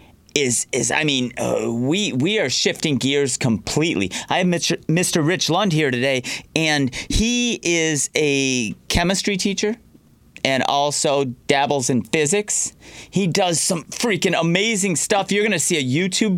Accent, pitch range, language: American, 160-215 Hz, English